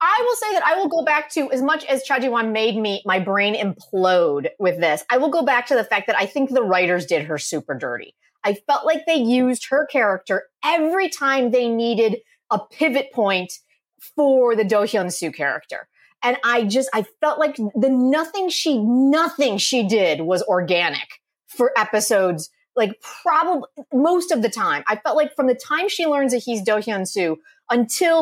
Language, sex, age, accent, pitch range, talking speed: English, female, 30-49, American, 200-300 Hz, 195 wpm